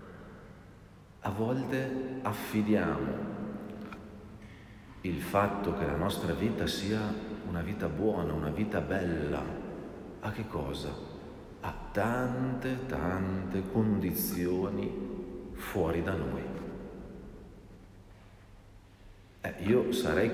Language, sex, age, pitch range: Italian, male, 50-69, 85-105 Hz